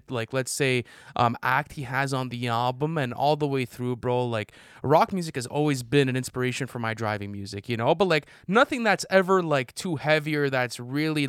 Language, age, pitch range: English, 20-39, 120-150 Hz